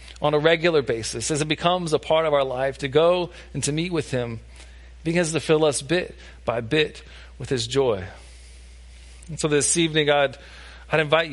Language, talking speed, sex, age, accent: English, 190 wpm, male, 40-59, American